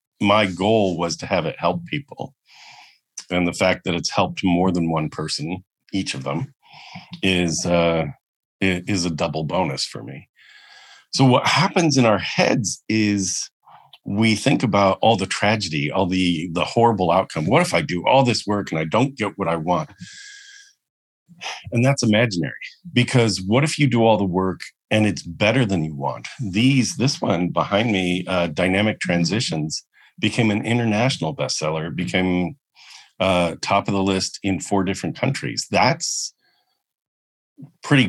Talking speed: 160 wpm